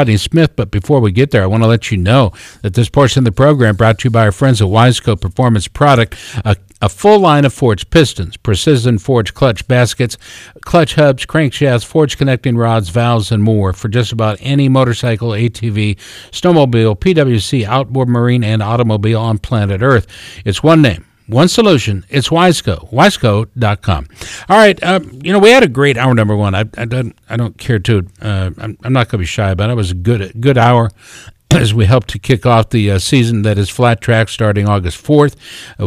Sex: male